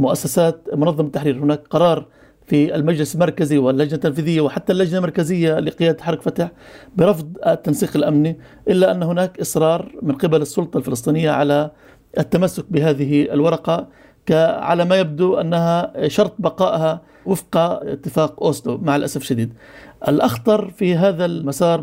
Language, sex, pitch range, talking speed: Arabic, male, 150-185 Hz, 130 wpm